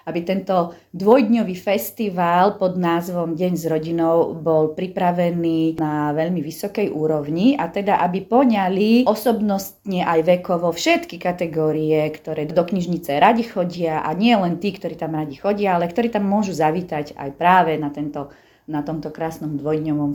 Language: Slovak